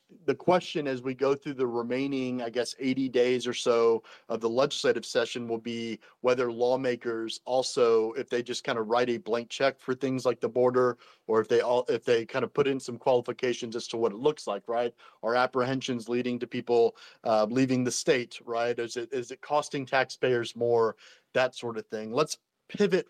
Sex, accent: male, American